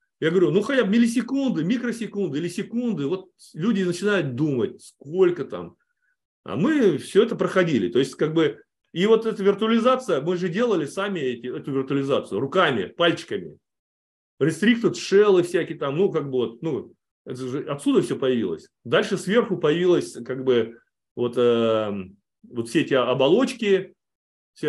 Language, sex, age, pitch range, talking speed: Russian, male, 30-49, 130-200 Hz, 155 wpm